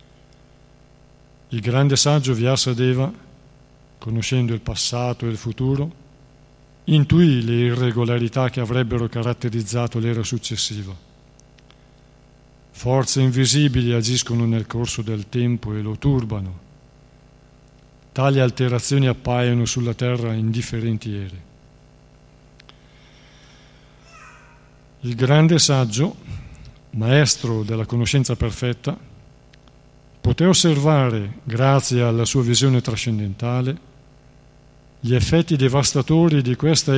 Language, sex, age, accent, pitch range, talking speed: Italian, male, 50-69, native, 120-140 Hz, 90 wpm